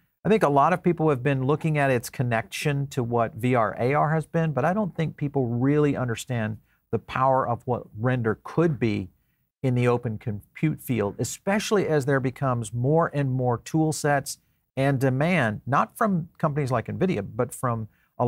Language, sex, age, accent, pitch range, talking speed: English, male, 50-69, American, 115-140 Hz, 185 wpm